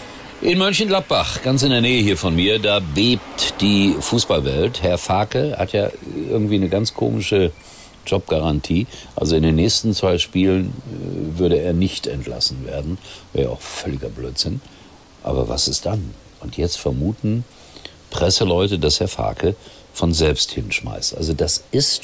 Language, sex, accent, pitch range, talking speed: German, male, German, 75-100 Hz, 150 wpm